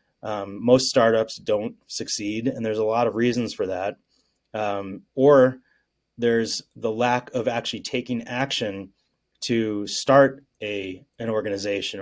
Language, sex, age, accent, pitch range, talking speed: English, male, 30-49, American, 110-130 Hz, 135 wpm